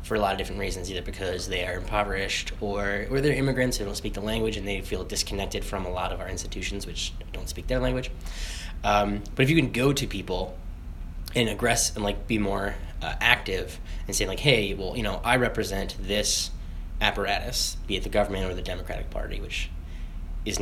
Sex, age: male, 10-29